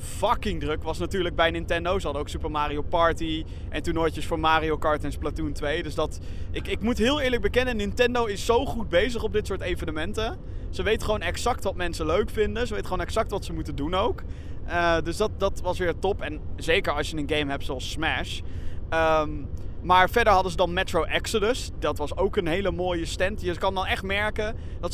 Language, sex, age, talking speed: Dutch, male, 20-39, 220 wpm